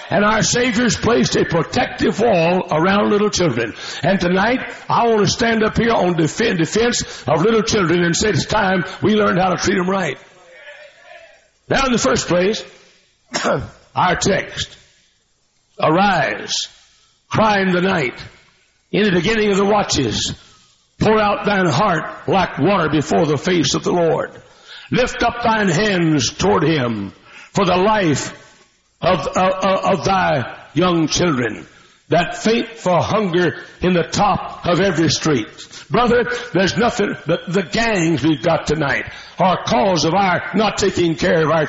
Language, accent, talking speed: English, American, 160 wpm